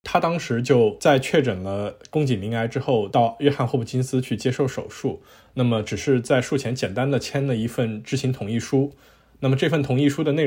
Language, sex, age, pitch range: Chinese, male, 20-39, 110-140 Hz